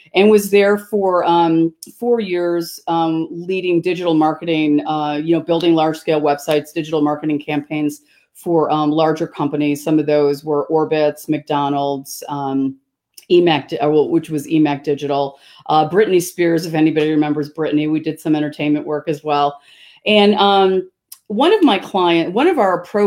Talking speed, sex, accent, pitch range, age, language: 155 wpm, female, American, 155-185 Hz, 40-59, English